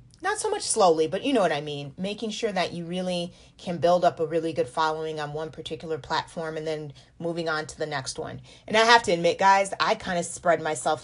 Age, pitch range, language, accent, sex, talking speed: 30-49, 155-185 Hz, English, American, female, 245 wpm